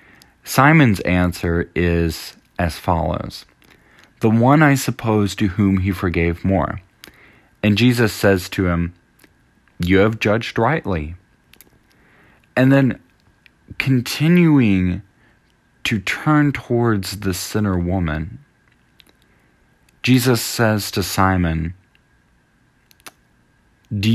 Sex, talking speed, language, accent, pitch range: male, 90 wpm, English, American, 90-120 Hz